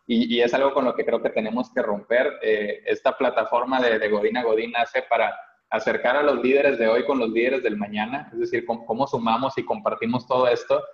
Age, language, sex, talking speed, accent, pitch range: 20-39, Spanish, male, 230 wpm, Mexican, 115-135 Hz